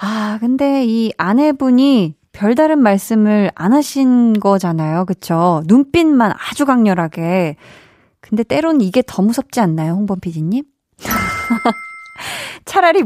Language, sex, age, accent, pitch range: Korean, female, 20-39, native, 185-245 Hz